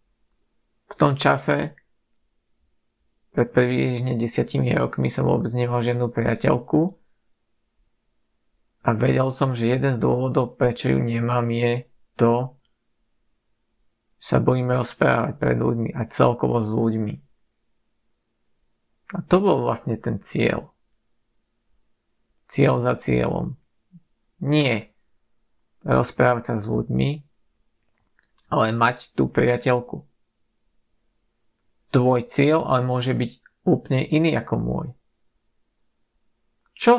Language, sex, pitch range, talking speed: Slovak, male, 115-140 Hz, 100 wpm